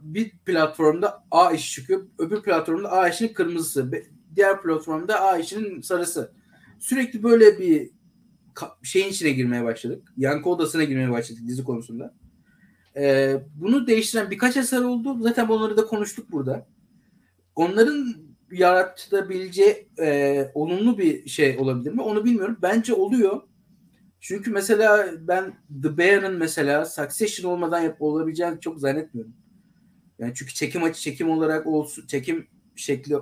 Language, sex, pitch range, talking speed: Turkish, male, 150-220 Hz, 130 wpm